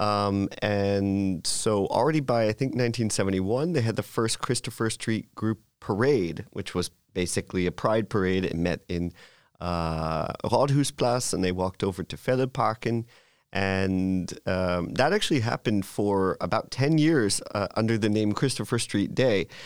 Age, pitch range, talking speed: 30-49, 95-120 Hz, 150 wpm